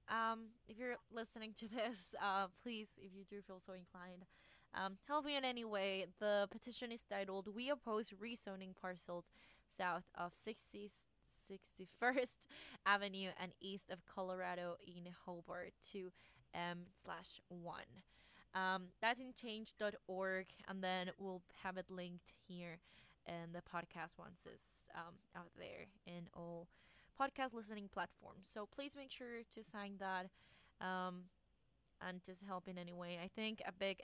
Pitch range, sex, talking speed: 180-215 Hz, female, 145 wpm